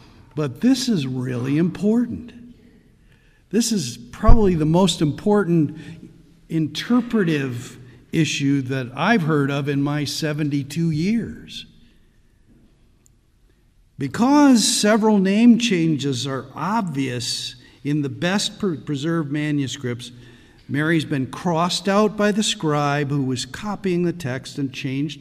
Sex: male